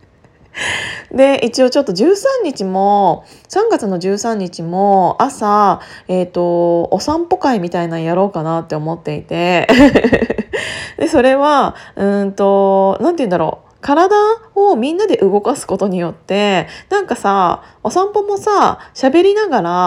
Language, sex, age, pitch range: Japanese, female, 20-39, 180-290 Hz